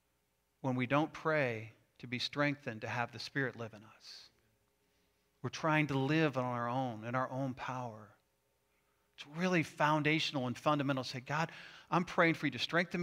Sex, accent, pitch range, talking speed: male, American, 120-180 Hz, 180 wpm